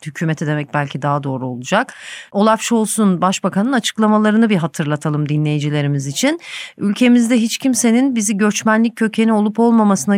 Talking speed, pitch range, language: 130 wpm, 170-220 Hz, Turkish